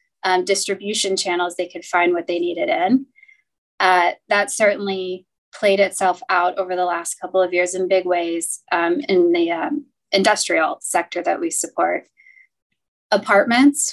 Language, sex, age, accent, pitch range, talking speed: English, female, 20-39, American, 180-220 Hz, 150 wpm